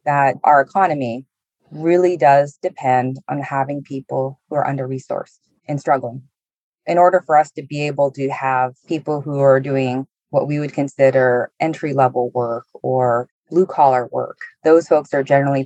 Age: 20-39